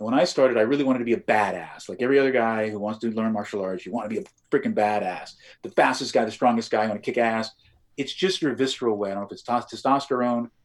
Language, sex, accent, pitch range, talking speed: English, male, American, 105-160 Hz, 275 wpm